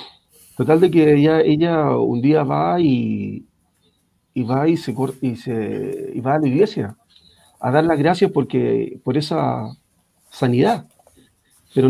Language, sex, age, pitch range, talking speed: Spanish, male, 50-69, 115-150 Hz, 145 wpm